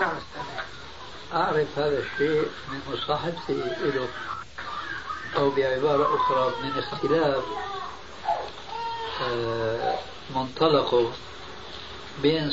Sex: male